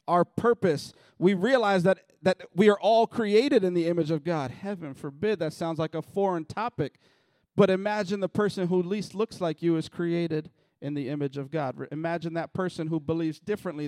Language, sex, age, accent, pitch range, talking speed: English, male, 40-59, American, 130-170 Hz, 195 wpm